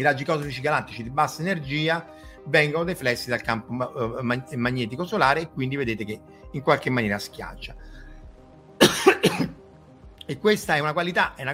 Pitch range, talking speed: 115-165 Hz, 150 wpm